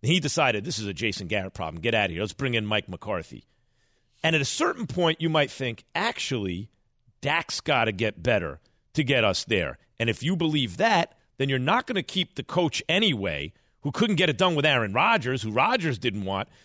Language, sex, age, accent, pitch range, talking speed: English, male, 40-59, American, 115-170 Hz, 220 wpm